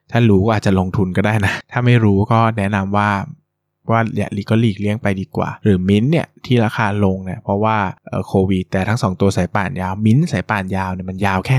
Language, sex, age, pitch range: Thai, male, 20-39, 95-120 Hz